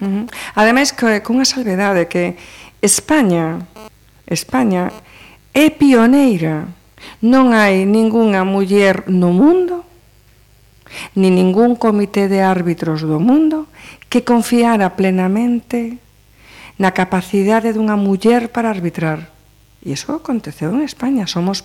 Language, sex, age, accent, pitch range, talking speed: Spanish, female, 50-69, Spanish, 160-225 Hz, 115 wpm